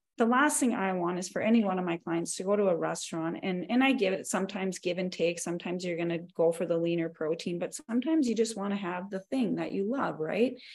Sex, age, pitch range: female, 30-49, 190-240 Hz